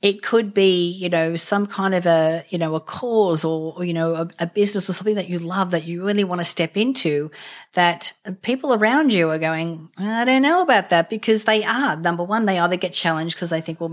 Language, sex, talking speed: English, female, 240 wpm